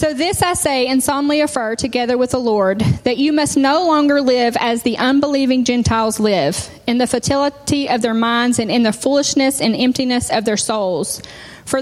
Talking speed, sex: 195 wpm, female